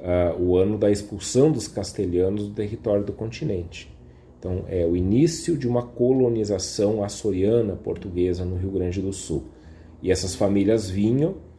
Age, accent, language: 40-59, Brazilian, Portuguese